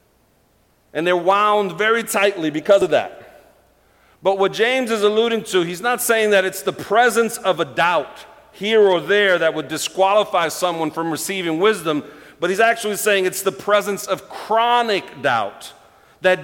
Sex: male